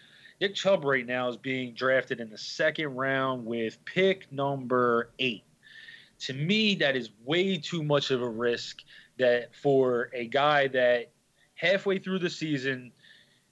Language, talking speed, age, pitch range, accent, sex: English, 150 wpm, 20-39, 125-155 Hz, American, male